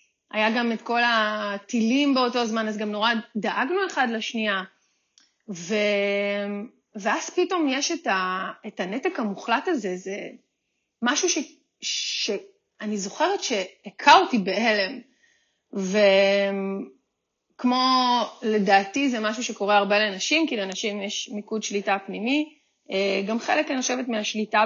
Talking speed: 120 wpm